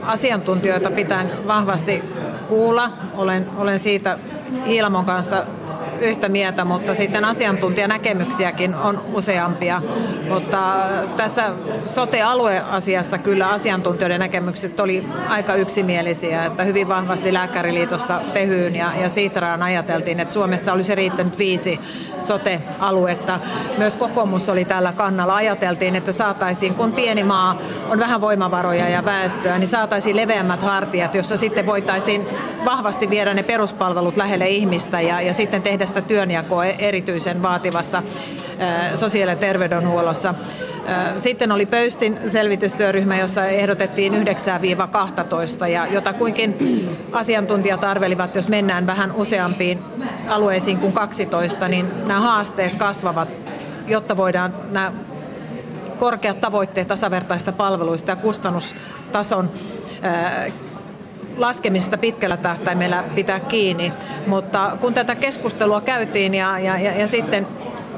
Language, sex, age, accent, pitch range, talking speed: Finnish, female, 40-59, native, 180-210 Hz, 110 wpm